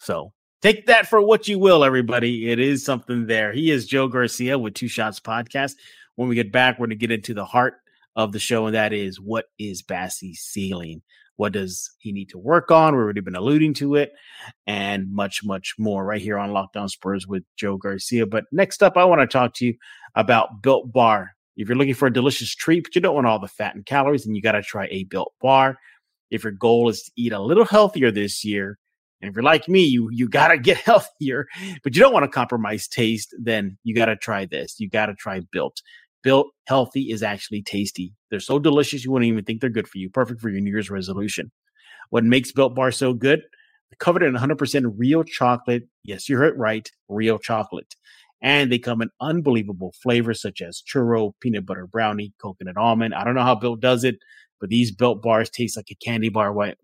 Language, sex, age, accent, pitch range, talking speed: English, male, 30-49, American, 105-135 Hz, 225 wpm